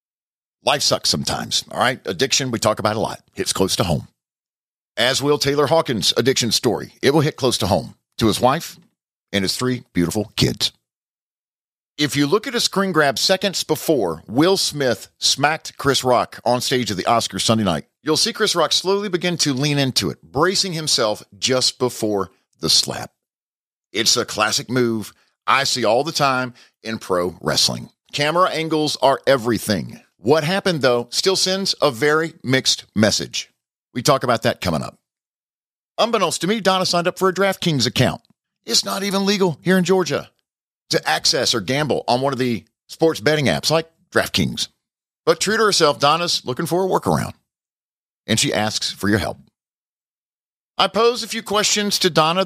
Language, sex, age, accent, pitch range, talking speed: English, male, 50-69, American, 125-185 Hz, 175 wpm